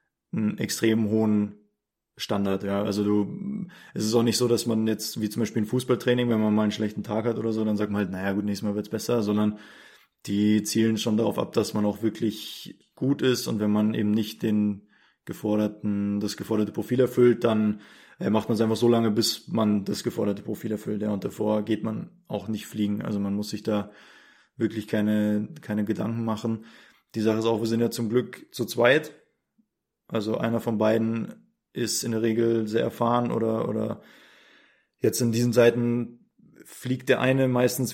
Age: 20-39